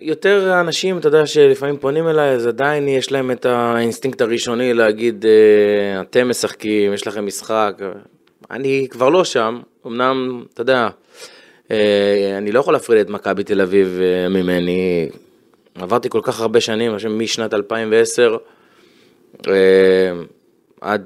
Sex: male